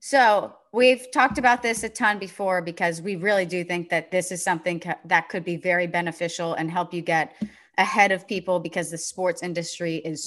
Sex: female